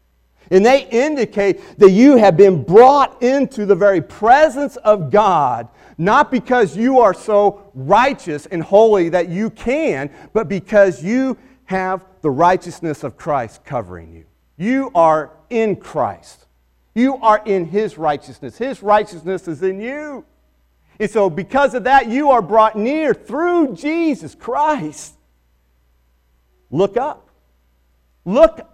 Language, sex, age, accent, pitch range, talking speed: English, male, 40-59, American, 170-255 Hz, 135 wpm